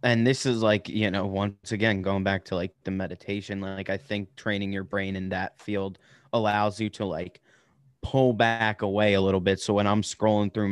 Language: English